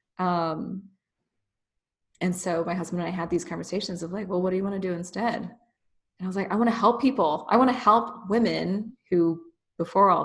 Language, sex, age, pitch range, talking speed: English, female, 20-39, 170-210 Hz, 215 wpm